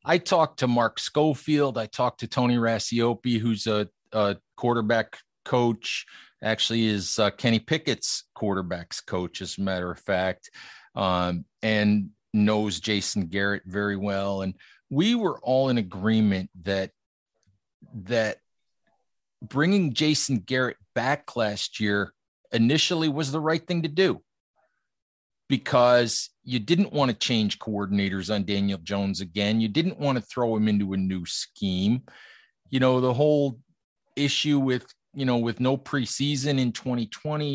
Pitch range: 100-130 Hz